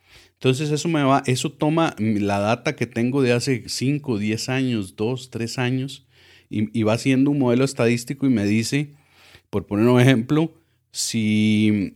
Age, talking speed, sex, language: 40-59, 165 wpm, male, Spanish